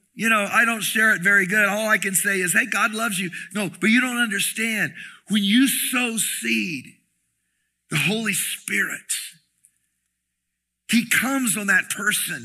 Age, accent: 50-69, American